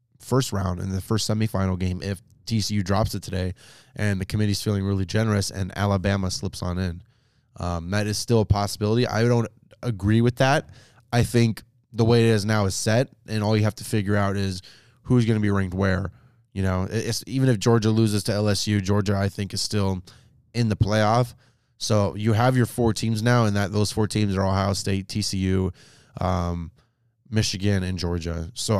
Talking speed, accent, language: 200 wpm, American, English